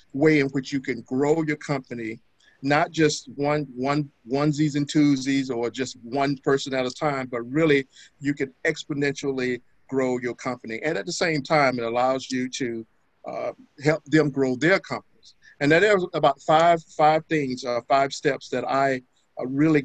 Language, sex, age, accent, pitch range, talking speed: English, male, 50-69, American, 130-155 Hz, 180 wpm